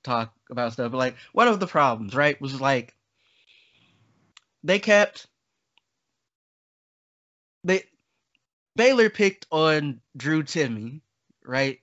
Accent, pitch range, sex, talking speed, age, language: American, 150-185 Hz, male, 105 wpm, 20-39, English